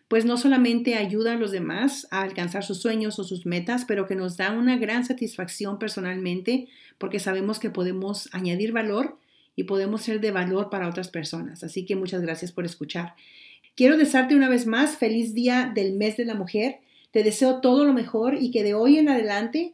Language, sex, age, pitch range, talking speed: English, female, 40-59, 205-255 Hz, 200 wpm